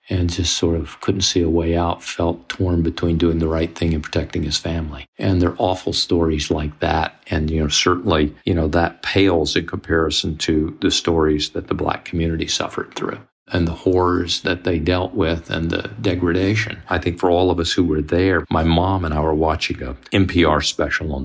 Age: 50-69